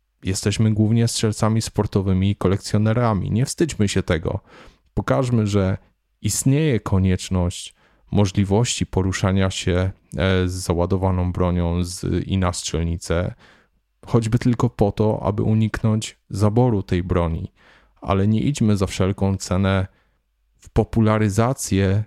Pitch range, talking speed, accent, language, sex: 90-110 Hz, 110 wpm, native, Polish, male